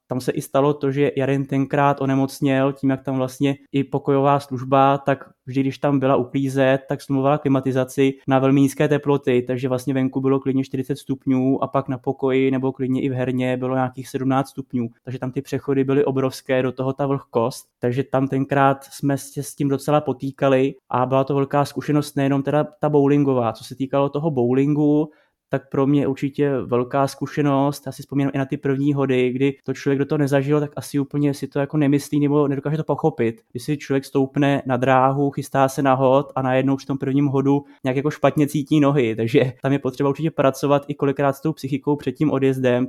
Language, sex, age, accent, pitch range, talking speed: Czech, male, 20-39, native, 130-140 Hz, 205 wpm